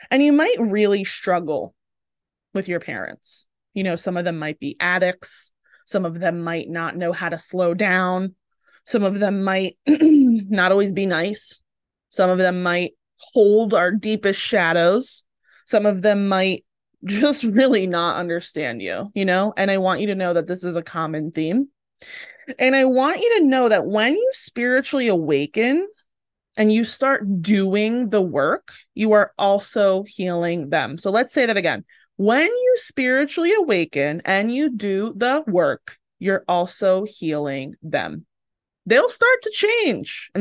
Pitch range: 175-250 Hz